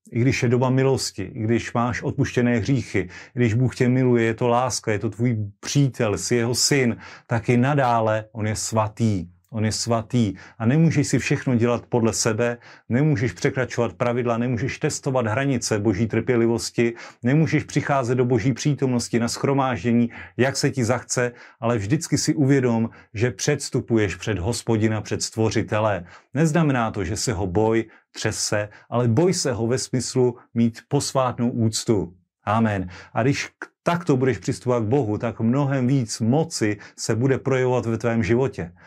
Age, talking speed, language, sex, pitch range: 40-59, 160 wpm, Slovak, male, 115-130 Hz